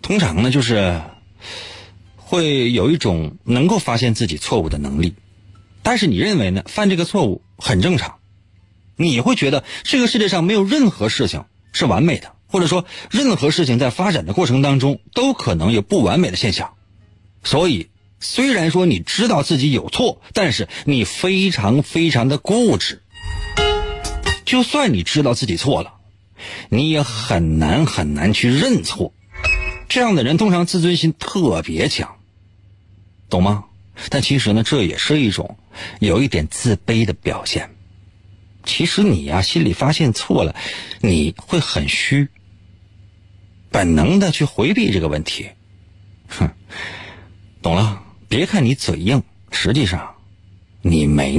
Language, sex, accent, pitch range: Chinese, male, native, 95-140 Hz